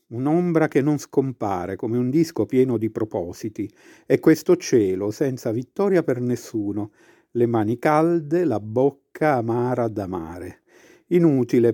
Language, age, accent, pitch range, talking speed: Italian, 50-69, native, 115-155 Hz, 135 wpm